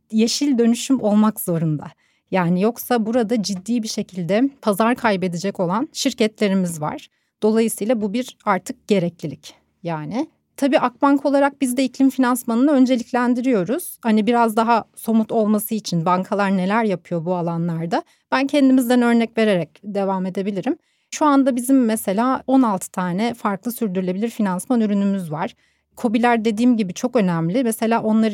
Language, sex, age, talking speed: Turkish, female, 30-49, 135 wpm